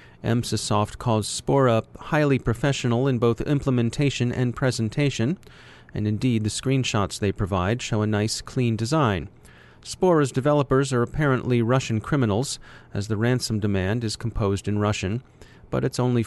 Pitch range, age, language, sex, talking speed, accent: 105-140 Hz, 40-59, English, male, 140 wpm, American